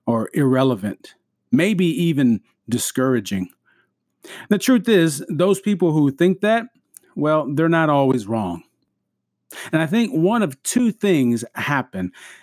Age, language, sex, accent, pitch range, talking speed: 40-59, English, male, American, 115-165 Hz, 125 wpm